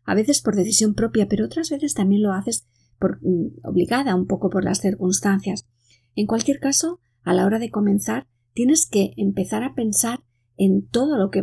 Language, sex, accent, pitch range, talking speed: Spanish, female, Spanish, 180-225 Hz, 180 wpm